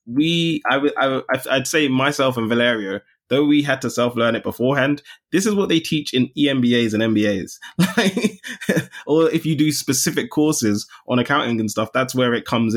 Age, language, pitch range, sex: 20-39, English, 115-150 Hz, male